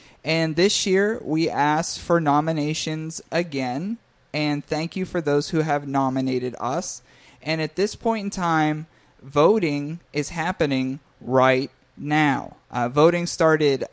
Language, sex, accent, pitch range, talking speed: English, male, American, 135-170 Hz, 135 wpm